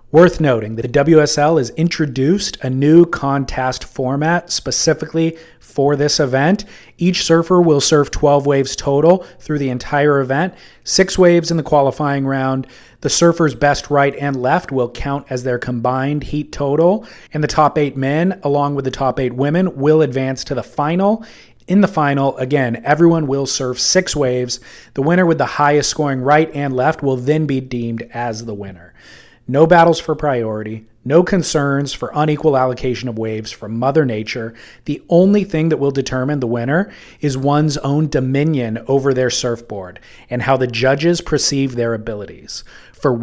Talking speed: 170 wpm